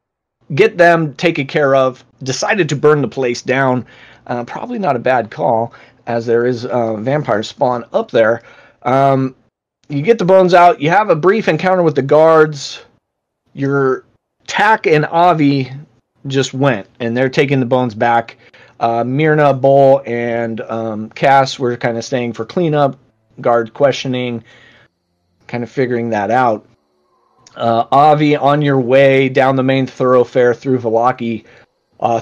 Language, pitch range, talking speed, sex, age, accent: English, 120-145 Hz, 155 wpm, male, 30-49, American